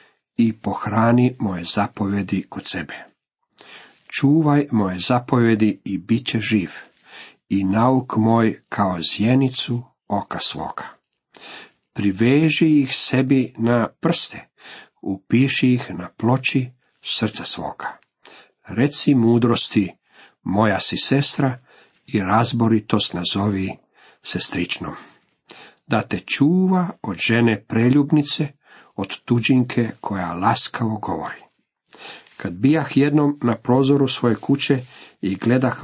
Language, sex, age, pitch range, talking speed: Croatian, male, 50-69, 110-135 Hz, 100 wpm